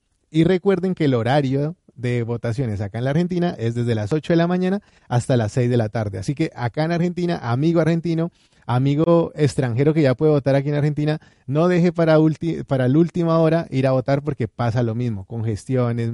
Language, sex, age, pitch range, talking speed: Spanish, male, 30-49, 120-160 Hz, 205 wpm